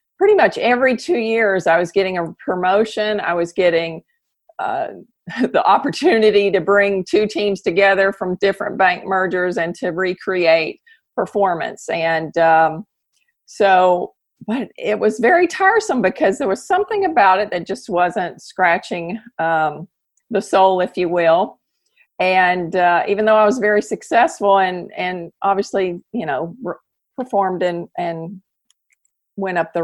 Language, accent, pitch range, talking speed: English, American, 175-225 Hz, 150 wpm